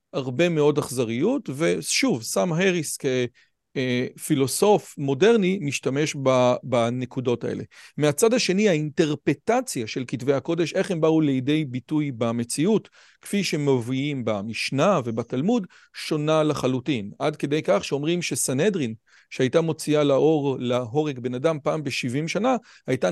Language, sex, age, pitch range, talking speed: Hebrew, male, 40-59, 135-175 Hz, 115 wpm